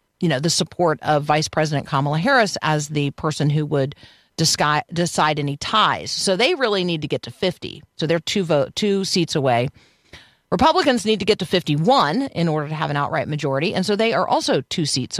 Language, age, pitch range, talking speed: English, 40-59, 150-195 Hz, 210 wpm